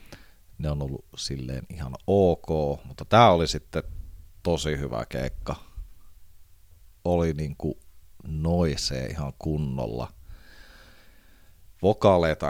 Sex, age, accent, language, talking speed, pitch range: male, 30-49, native, Finnish, 85 wpm, 75-90 Hz